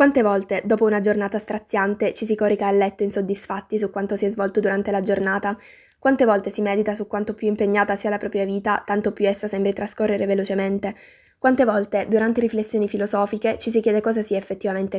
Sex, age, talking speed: female, 20-39, 195 wpm